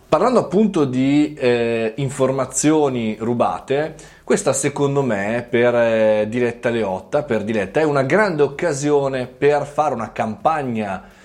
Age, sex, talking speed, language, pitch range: 20-39, male, 125 wpm, Italian, 110-140 Hz